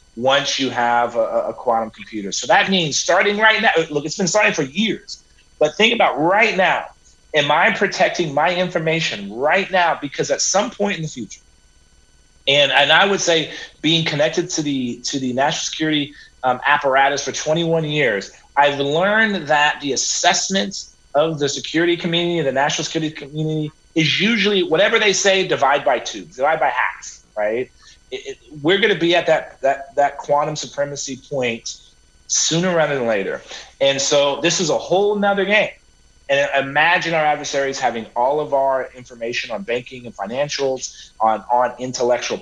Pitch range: 135-180 Hz